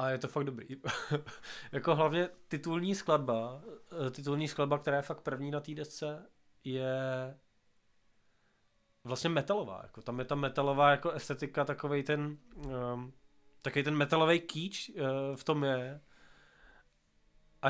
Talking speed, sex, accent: 130 wpm, male, native